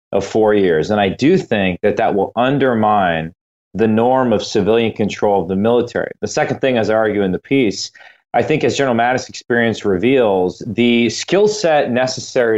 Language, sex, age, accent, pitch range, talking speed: English, male, 30-49, American, 105-130 Hz, 185 wpm